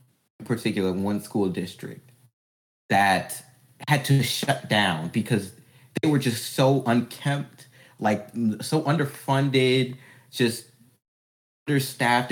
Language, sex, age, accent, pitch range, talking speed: English, male, 20-39, American, 105-130 Hz, 95 wpm